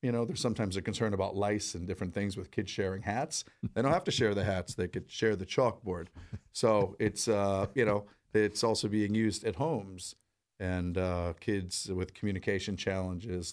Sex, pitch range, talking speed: male, 90-110 Hz, 195 wpm